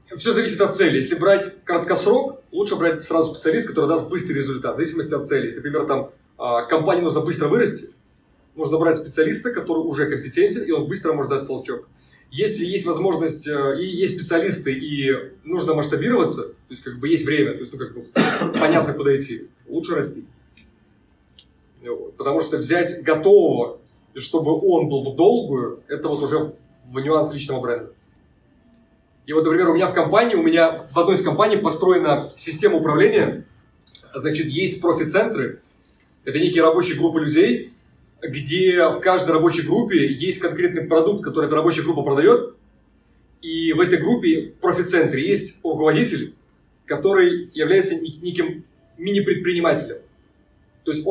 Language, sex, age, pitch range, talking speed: Russian, male, 30-49, 155-195 Hz, 155 wpm